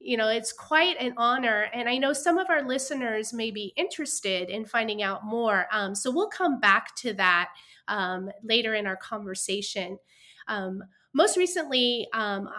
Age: 30-49